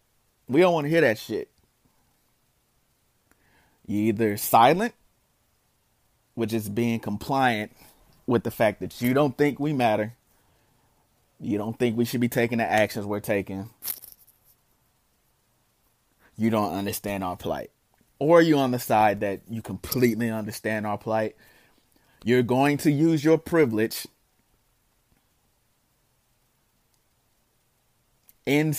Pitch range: 105-130 Hz